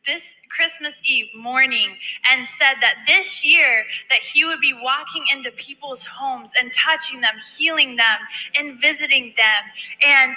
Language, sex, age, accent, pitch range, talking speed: English, female, 20-39, American, 245-300 Hz, 150 wpm